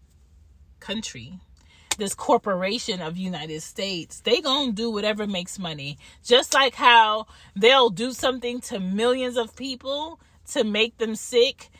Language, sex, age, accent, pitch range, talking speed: English, female, 30-49, American, 180-260 Hz, 130 wpm